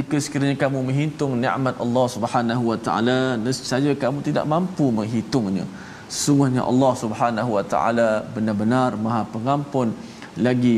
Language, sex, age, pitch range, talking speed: Malayalam, male, 20-39, 110-135 Hz, 130 wpm